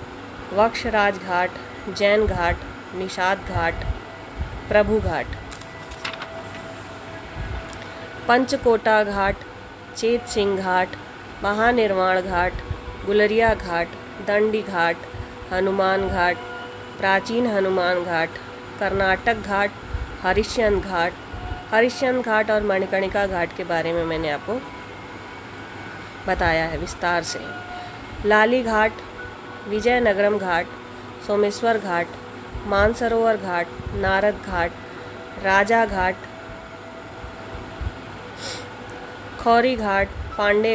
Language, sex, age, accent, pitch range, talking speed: Hindi, female, 20-39, native, 165-215 Hz, 85 wpm